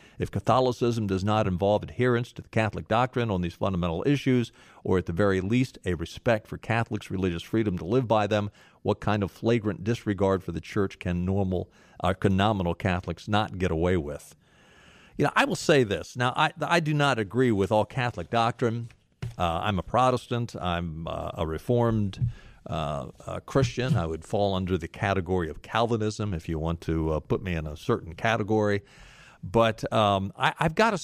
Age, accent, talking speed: 50-69, American, 185 wpm